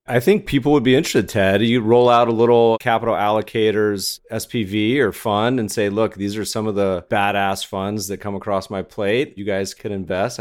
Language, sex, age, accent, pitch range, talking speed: English, male, 30-49, American, 95-115 Hz, 210 wpm